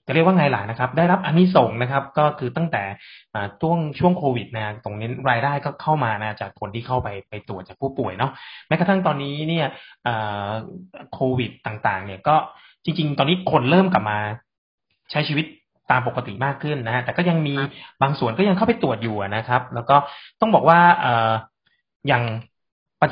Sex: male